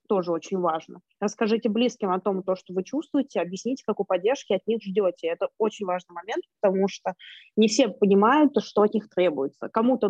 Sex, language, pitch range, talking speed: female, Russian, 185-235 Hz, 190 wpm